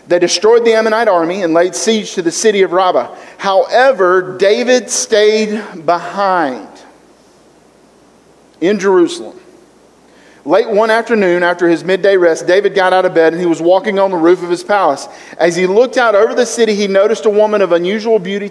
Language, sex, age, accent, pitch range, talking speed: English, male, 40-59, American, 175-220 Hz, 180 wpm